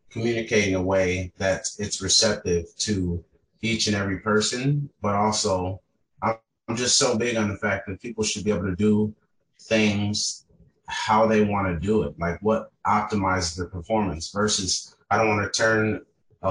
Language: English